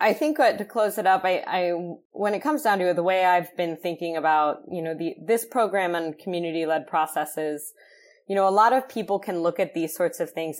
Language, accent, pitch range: English, American, 155-190 Hz